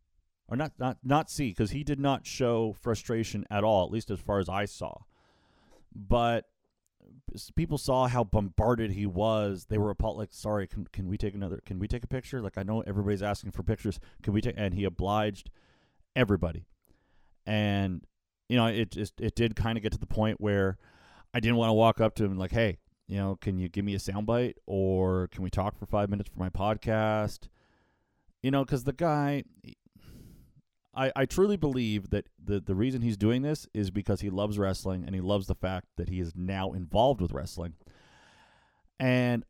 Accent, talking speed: American, 195 wpm